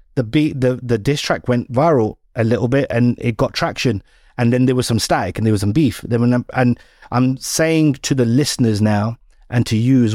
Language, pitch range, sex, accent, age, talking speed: English, 110-135 Hz, male, British, 30-49, 230 wpm